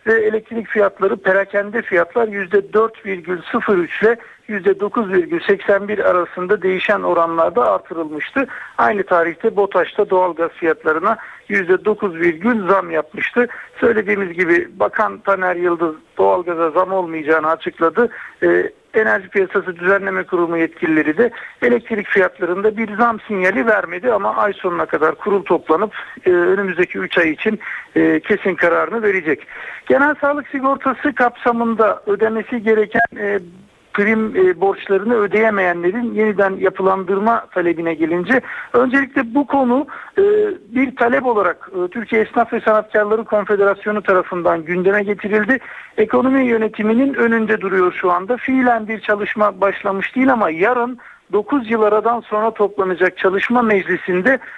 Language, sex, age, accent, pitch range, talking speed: Turkish, male, 60-79, native, 185-235 Hz, 115 wpm